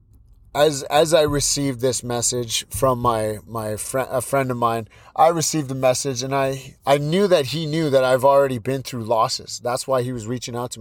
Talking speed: 210 wpm